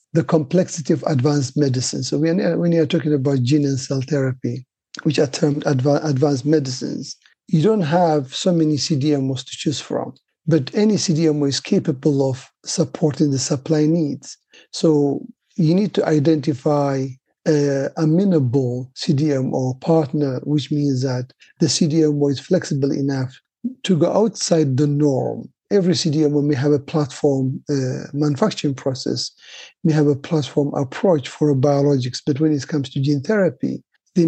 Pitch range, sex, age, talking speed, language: 140-165 Hz, male, 50-69, 150 wpm, English